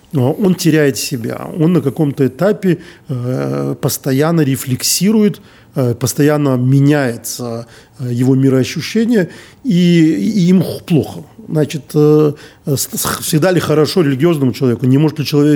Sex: male